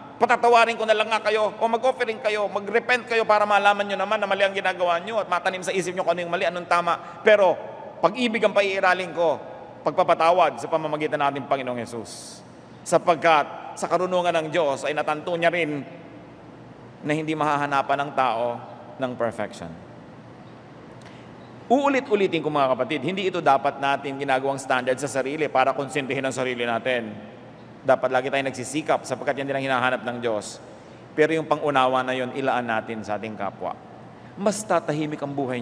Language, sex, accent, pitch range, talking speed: English, male, Filipino, 135-190 Hz, 165 wpm